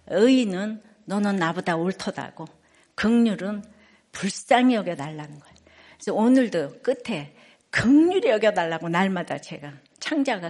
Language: Korean